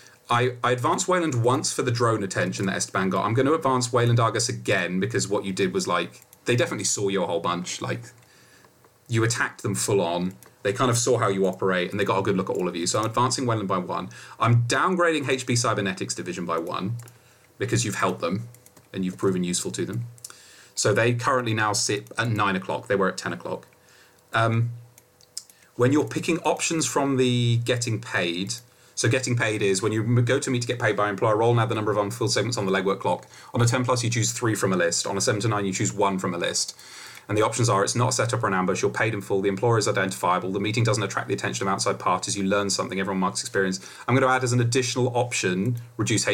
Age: 30-49